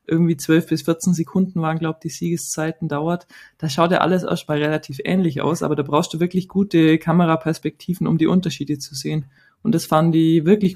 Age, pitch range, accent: 20-39, 165-200 Hz, German